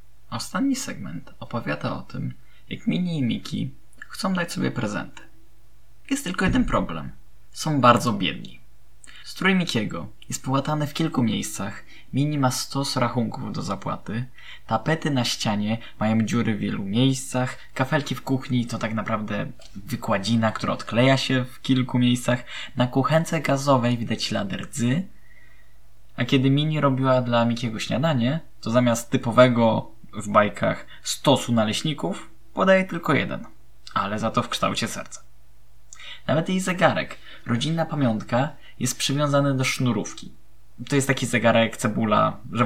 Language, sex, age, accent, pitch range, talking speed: Polish, male, 20-39, native, 115-140 Hz, 135 wpm